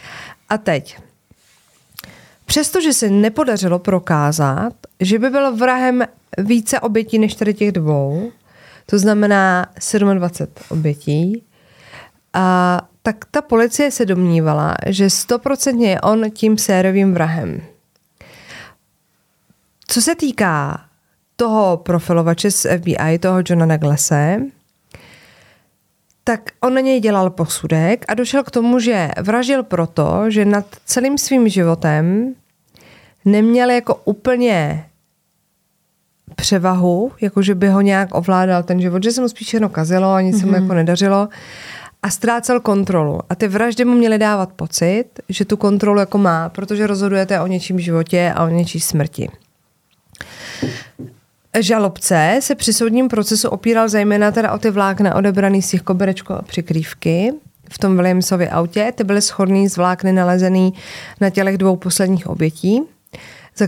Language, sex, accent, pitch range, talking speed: Czech, female, native, 175-225 Hz, 135 wpm